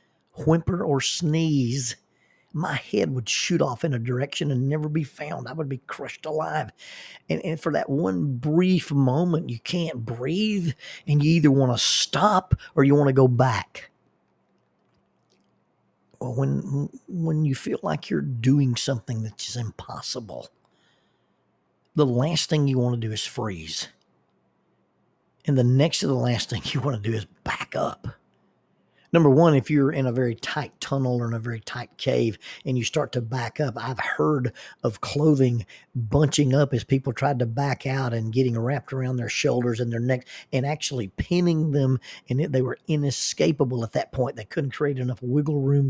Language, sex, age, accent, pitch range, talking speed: English, male, 50-69, American, 120-145 Hz, 180 wpm